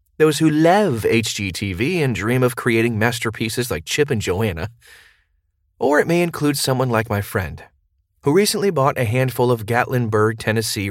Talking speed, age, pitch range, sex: 160 wpm, 30-49, 105-145 Hz, male